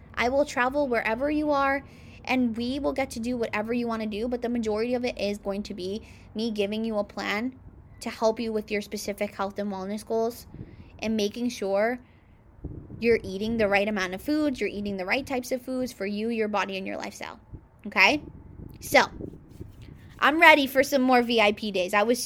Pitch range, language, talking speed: 200-250 Hz, English, 205 wpm